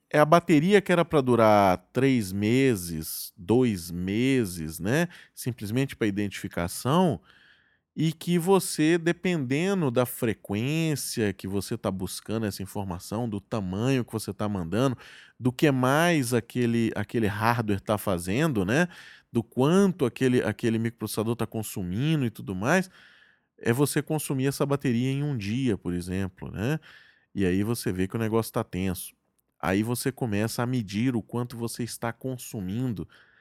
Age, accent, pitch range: 20-39, Brazilian, 100-135 Hz